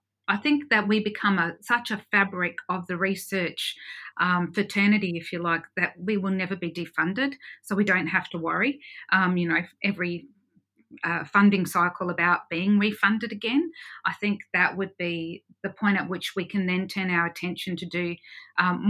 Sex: female